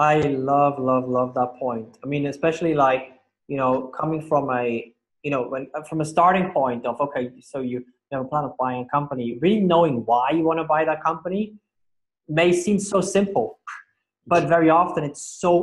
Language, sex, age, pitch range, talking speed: English, male, 20-39, 130-170 Hz, 195 wpm